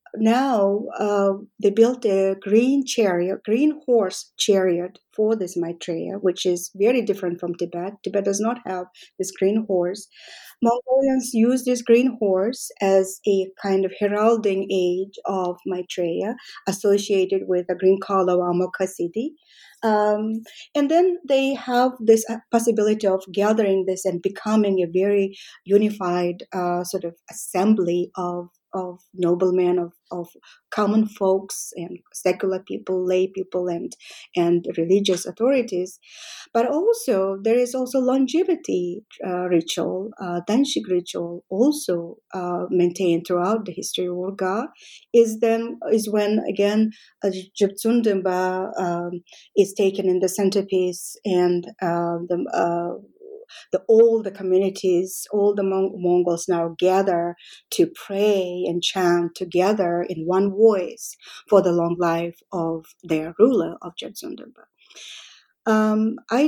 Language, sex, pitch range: English, female, 180-220 Hz